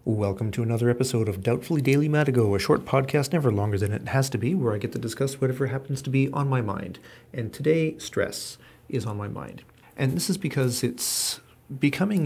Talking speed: 210 wpm